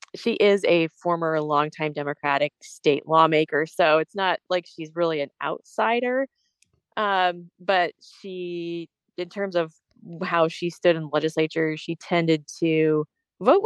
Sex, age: female, 30-49